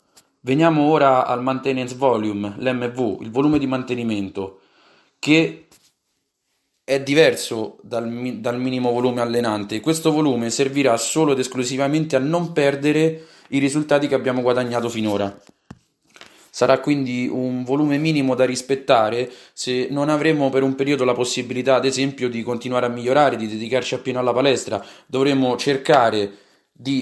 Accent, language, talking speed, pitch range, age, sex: native, Italian, 140 wpm, 115-140 Hz, 20-39, male